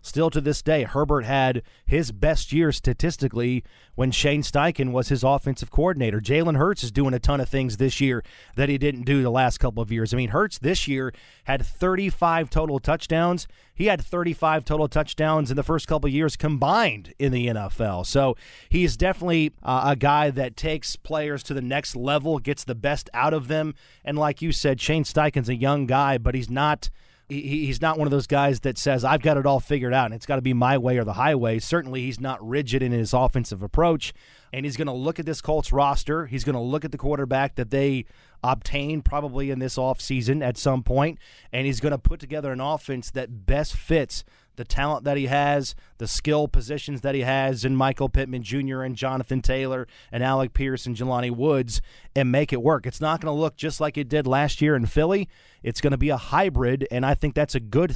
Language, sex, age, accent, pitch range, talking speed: English, male, 30-49, American, 130-150 Hz, 220 wpm